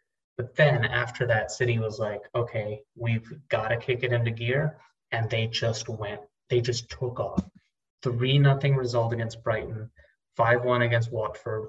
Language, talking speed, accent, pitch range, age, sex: English, 160 wpm, American, 110-125 Hz, 20-39, male